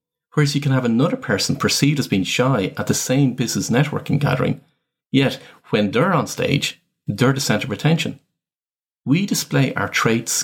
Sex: male